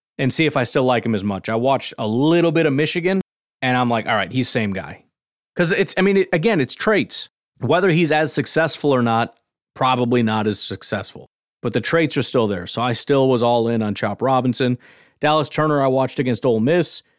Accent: American